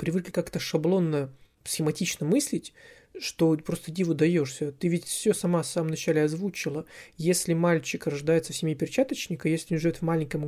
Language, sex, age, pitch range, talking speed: Russian, male, 20-39, 150-180 Hz, 160 wpm